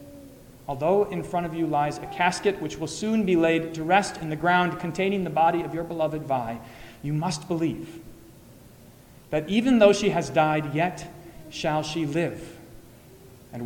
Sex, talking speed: male, 170 wpm